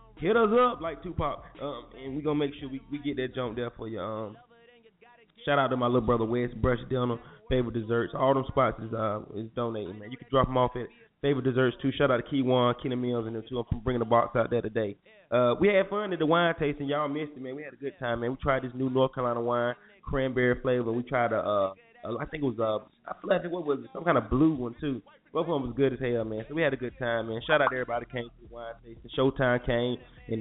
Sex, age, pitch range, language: male, 20-39, 120-145 Hz, English